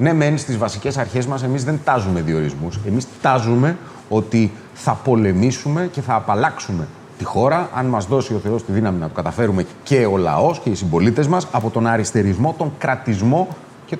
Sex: male